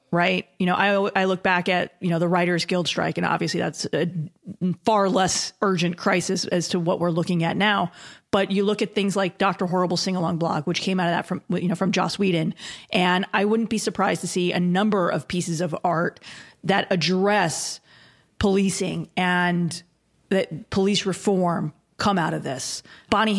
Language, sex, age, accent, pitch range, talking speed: English, female, 30-49, American, 175-200 Hz, 195 wpm